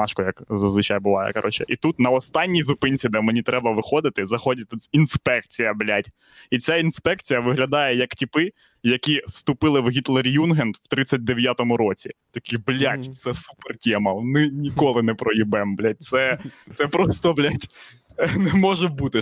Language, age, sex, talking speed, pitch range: Ukrainian, 20-39, male, 150 wpm, 115-150 Hz